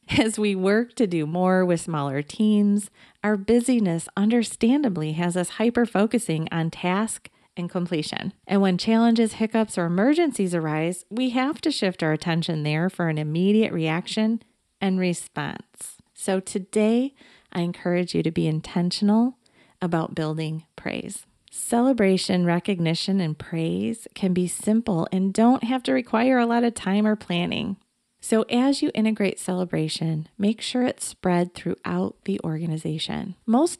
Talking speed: 145 wpm